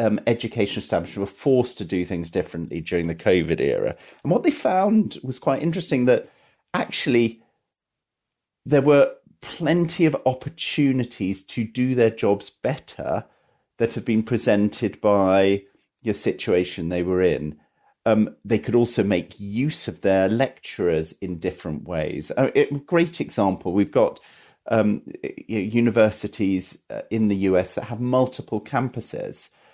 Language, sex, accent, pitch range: English, male, British, 95-120 Hz